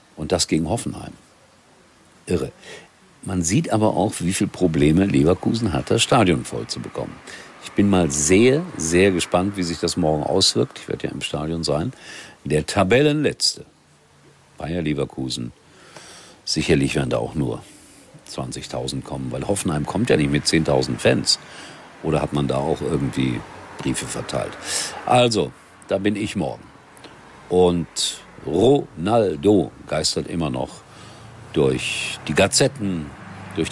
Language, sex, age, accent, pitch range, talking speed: German, male, 50-69, German, 80-105 Hz, 135 wpm